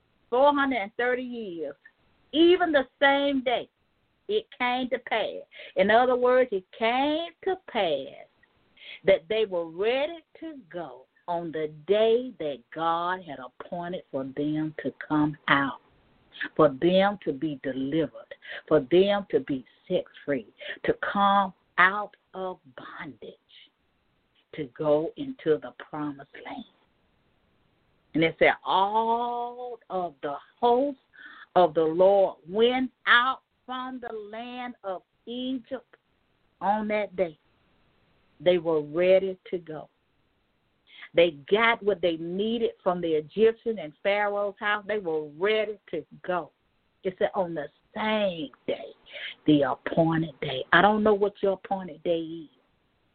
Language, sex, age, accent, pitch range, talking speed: English, female, 50-69, American, 160-235 Hz, 130 wpm